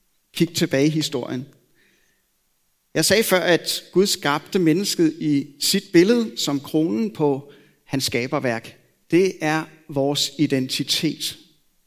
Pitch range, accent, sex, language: 150-205 Hz, native, male, Danish